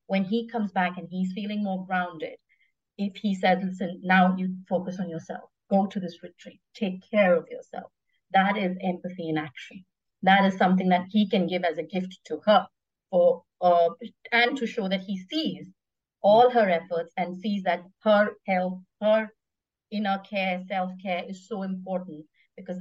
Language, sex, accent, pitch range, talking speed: English, female, Indian, 180-215 Hz, 175 wpm